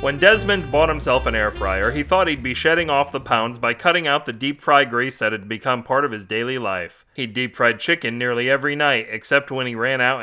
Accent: American